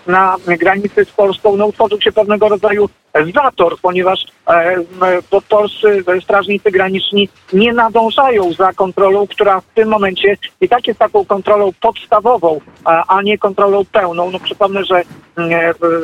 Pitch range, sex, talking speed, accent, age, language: 180-210 Hz, male, 145 wpm, native, 40-59, Polish